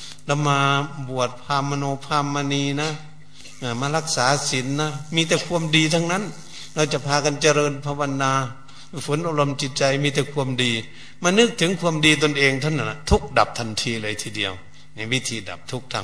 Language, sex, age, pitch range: Thai, male, 60-79, 115-150 Hz